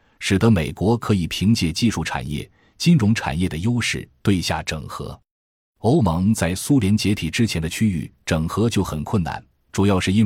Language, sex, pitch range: Chinese, male, 80-110 Hz